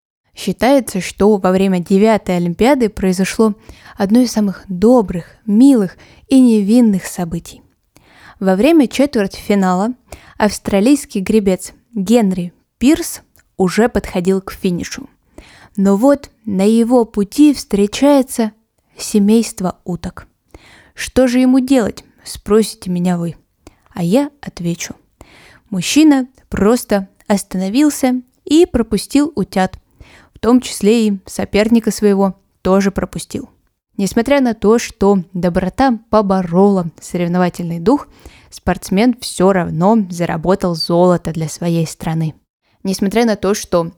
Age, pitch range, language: 20-39, 185-235 Hz, Russian